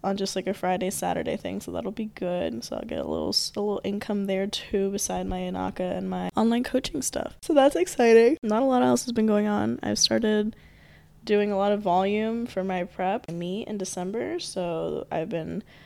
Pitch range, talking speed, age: 180-225 Hz, 210 wpm, 10-29